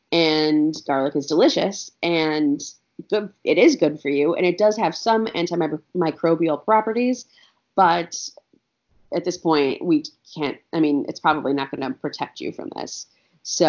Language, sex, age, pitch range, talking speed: English, female, 30-49, 150-195 Hz, 155 wpm